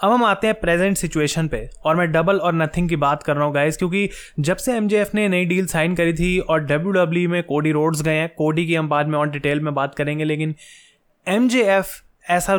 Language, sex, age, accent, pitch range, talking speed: Hindi, male, 20-39, native, 150-175 Hz, 230 wpm